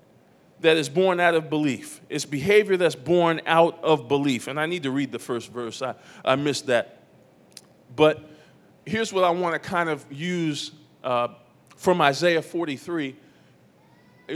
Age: 40-59